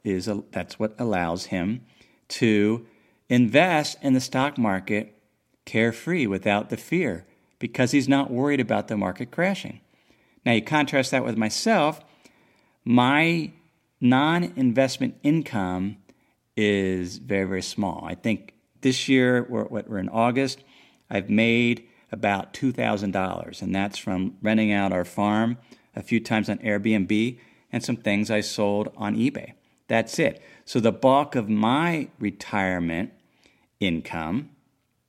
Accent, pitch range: American, 100-130 Hz